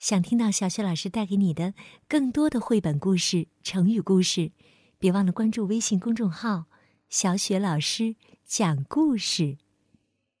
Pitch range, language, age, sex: 155-210 Hz, Chinese, 50-69, female